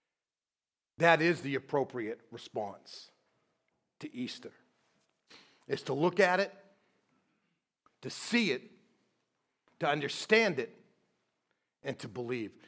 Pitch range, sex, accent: 150-220 Hz, male, American